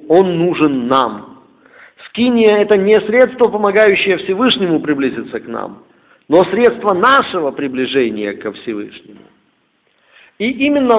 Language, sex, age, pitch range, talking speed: Russian, male, 50-69, 170-250 Hz, 115 wpm